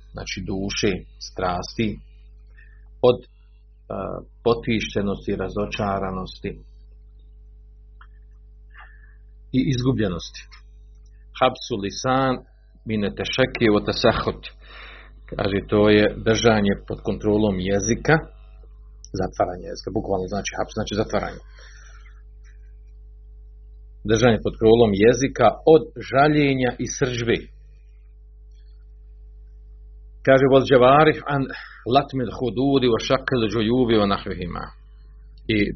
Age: 40-59